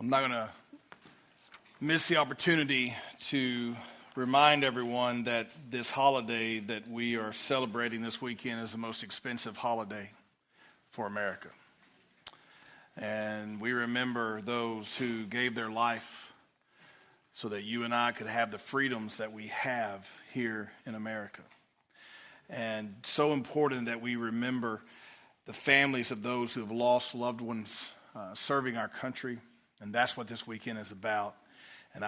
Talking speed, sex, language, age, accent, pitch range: 140 wpm, male, English, 40-59, American, 110-125 Hz